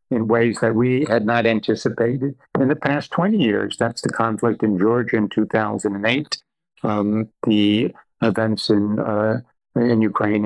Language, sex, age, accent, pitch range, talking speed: English, male, 60-79, American, 105-120 Hz, 150 wpm